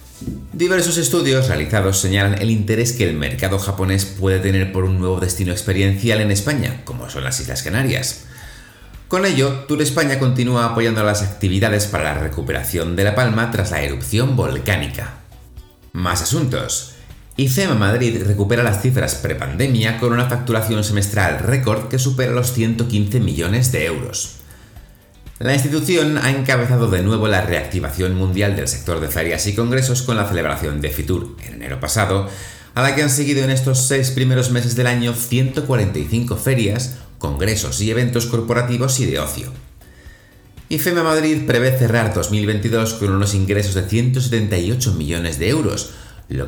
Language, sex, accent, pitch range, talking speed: Spanish, male, Spanish, 95-125 Hz, 155 wpm